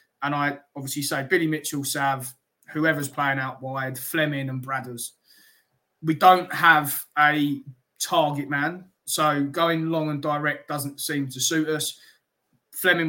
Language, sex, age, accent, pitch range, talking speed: English, male, 20-39, British, 140-160 Hz, 140 wpm